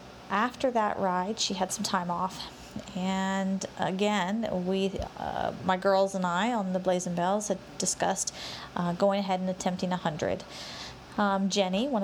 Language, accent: English, American